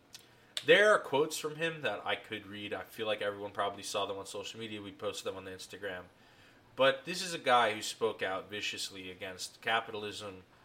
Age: 20-39